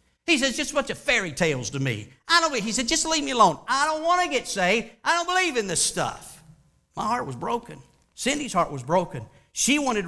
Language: English